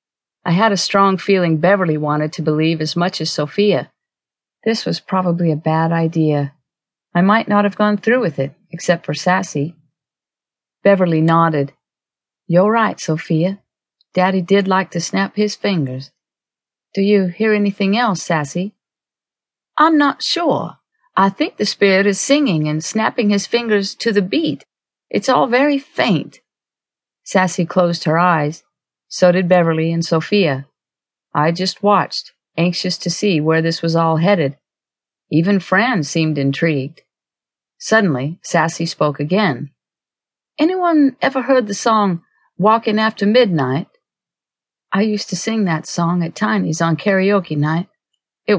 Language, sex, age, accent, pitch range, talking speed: English, female, 50-69, American, 160-205 Hz, 145 wpm